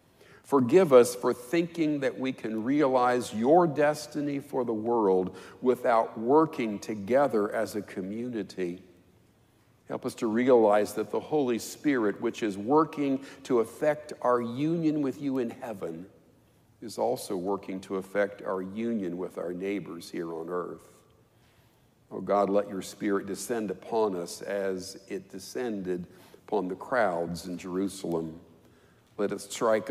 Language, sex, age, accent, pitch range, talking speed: English, male, 50-69, American, 95-125 Hz, 140 wpm